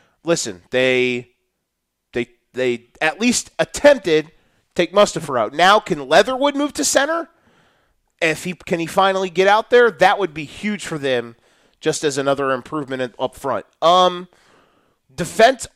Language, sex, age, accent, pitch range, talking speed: English, male, 30-49, American, 140-195 Hz, 150 wpm